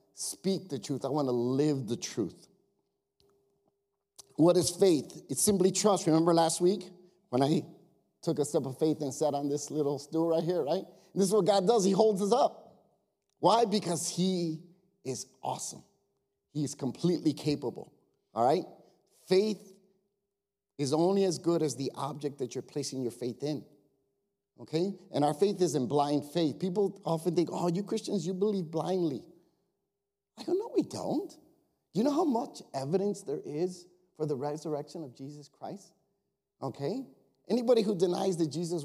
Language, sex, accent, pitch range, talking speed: English, male, American, 145-195 Hz, 170 wpm